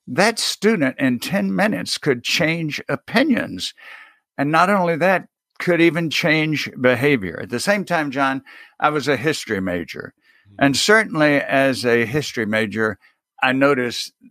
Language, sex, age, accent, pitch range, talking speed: English, male, 60-79, American, 115-160 Hz, 145 wpm